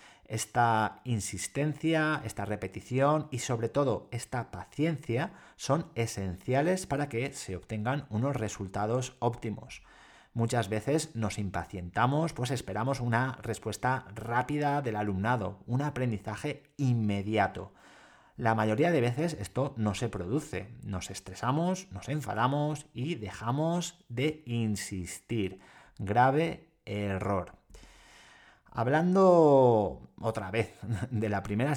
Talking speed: 105 wpm